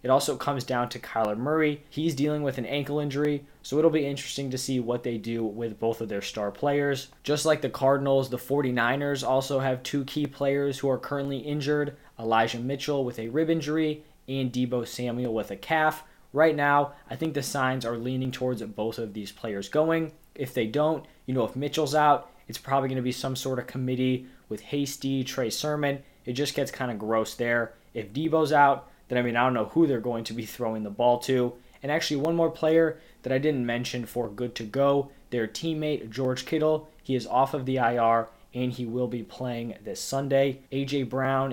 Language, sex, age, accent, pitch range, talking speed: English, male, 20-39, American, 120-145 Hz, 210 wpm